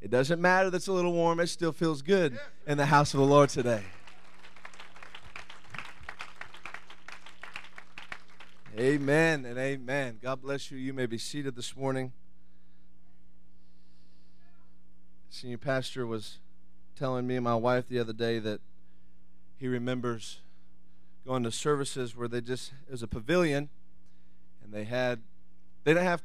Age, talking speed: 30-49, 140 wpm